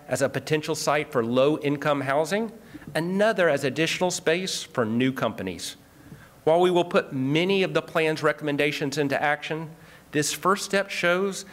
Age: 40-59